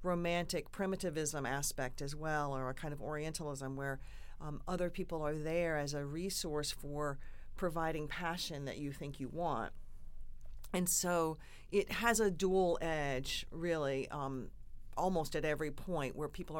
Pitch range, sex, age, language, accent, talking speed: 140-185 Hz, female, 40-59, English, American, 150 wpm